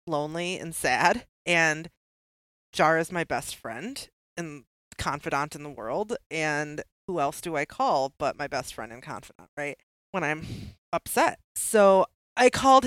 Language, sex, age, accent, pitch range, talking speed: English, female, 30-49, American, 160-225 Hz, 155 wpm